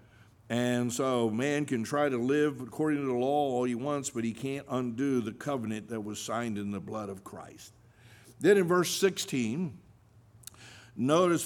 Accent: American